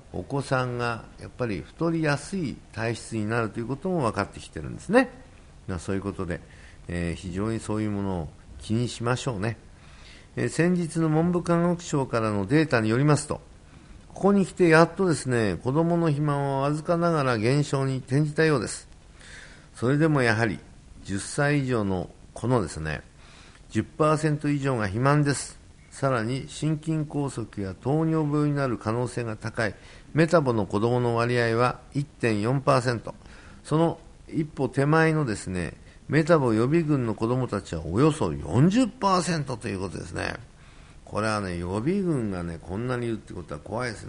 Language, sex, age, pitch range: Japanese, male, 50-69, 95-145 Hz